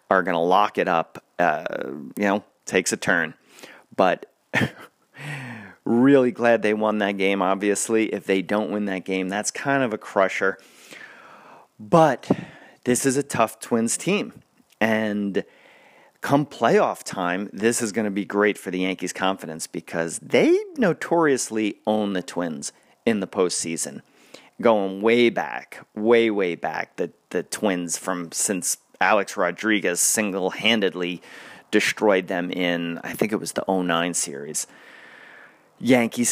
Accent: American